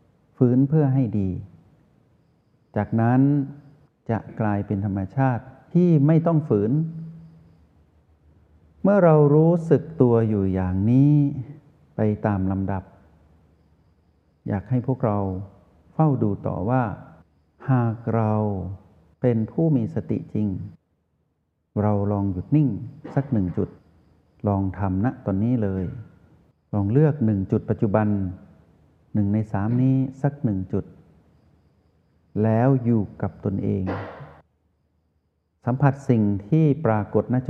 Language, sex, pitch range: Thai, male, 95-130 Hz